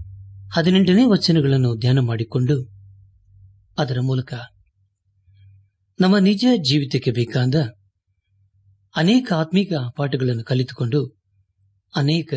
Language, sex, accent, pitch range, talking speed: Kannada, male, native, 100-155 Hz, 75 wpm